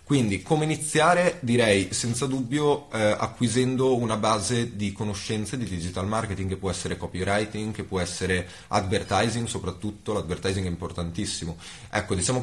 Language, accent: Italian, native